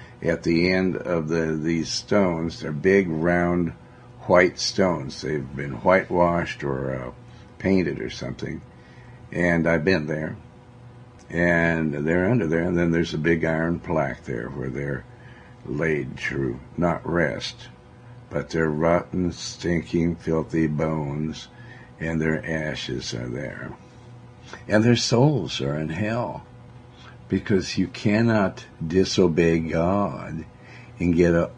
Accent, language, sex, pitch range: American, English, male, 80-120 Hz